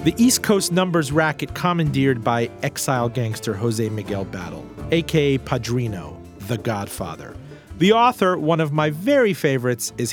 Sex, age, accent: male, 40-59, American